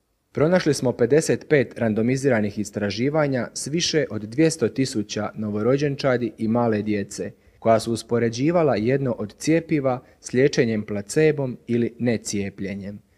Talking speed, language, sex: 115 wpm, Croatian, male